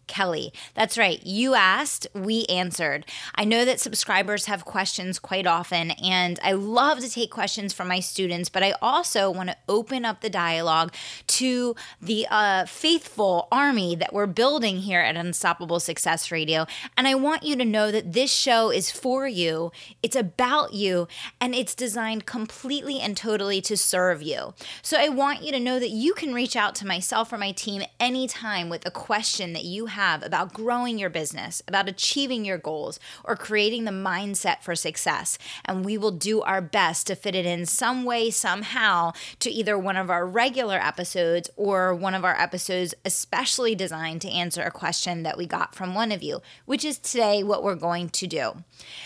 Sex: female